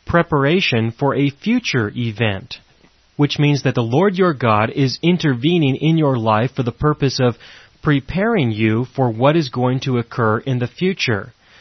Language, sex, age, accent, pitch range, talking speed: English, male, 30-49, American, 115-145 Hz, 165 wpm